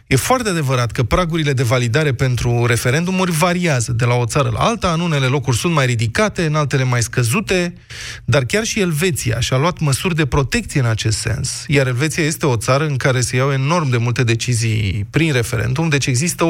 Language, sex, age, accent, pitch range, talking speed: Romanian, male, 20-39, native, 120-170 Hz, 200 wpm